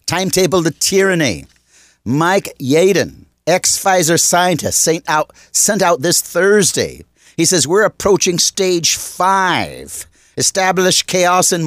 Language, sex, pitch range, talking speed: English, male, 140-190 Hz, 115 wpm